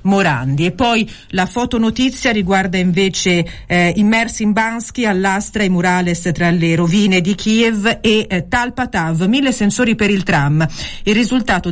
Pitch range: 175-210 Hz